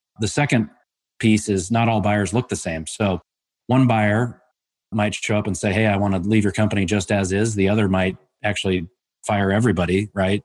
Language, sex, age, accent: English, male, 30-49, American